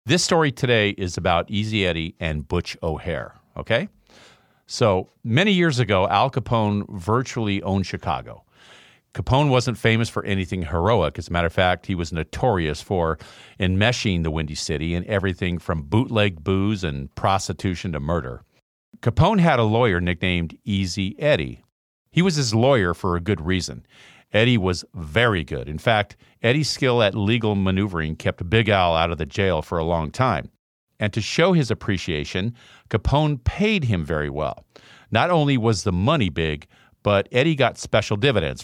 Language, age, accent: English, 50-69, American